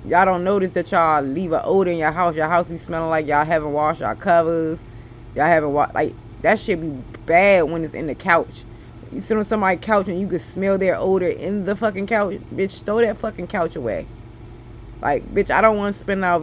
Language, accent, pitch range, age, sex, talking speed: English, American, 140-195 Hz, 20-39, female, 230 wpm